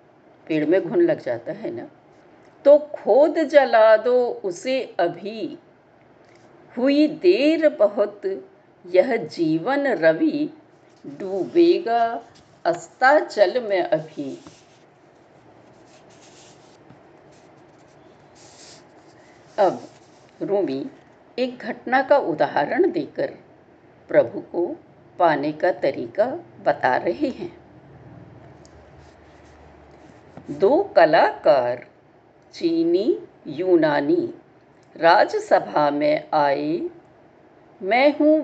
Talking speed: 75 wpm